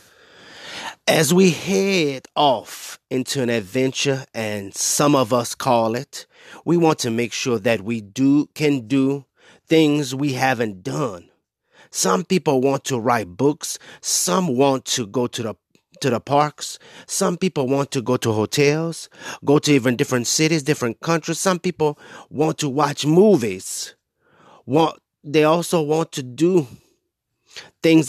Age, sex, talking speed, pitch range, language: 30-49, male, 145 wpm, 120-150 Hz, English